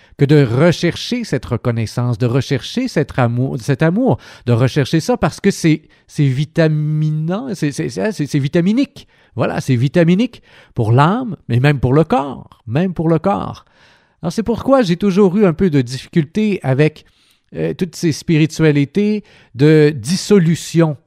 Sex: male